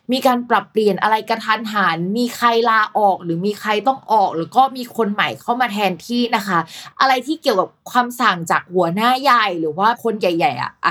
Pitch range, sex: 190-245 Hz, female